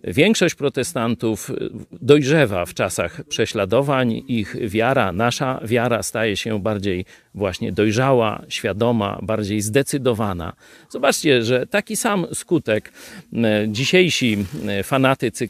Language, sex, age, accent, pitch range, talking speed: Polish, male, 40-59, native, 110-140 Hz, 95 wpm